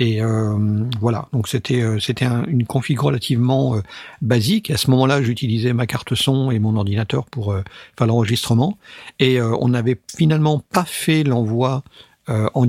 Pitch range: 115-135 Hz